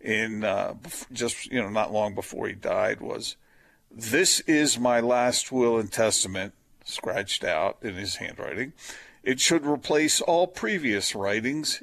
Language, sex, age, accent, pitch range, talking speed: English, male, 50-69, American, 115-170 Hz, 145 wpm